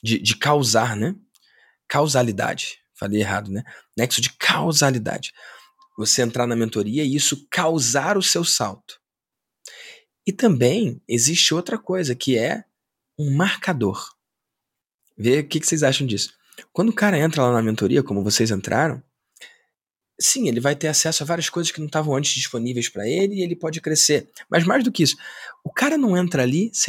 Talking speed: 170 wpm